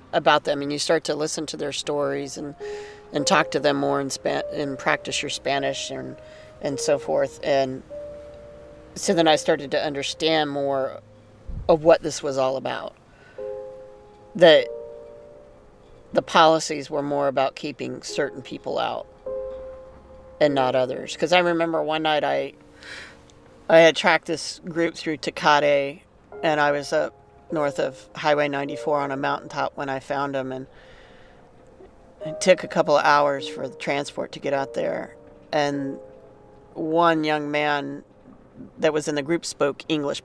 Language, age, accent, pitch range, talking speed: English, 40-59, American, 130-165 Hz, 160 wpm